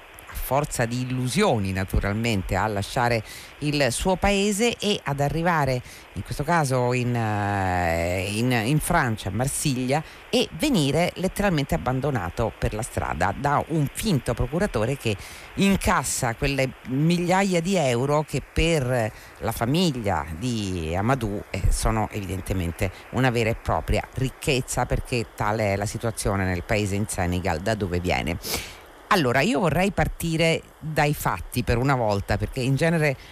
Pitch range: 105-150 Hz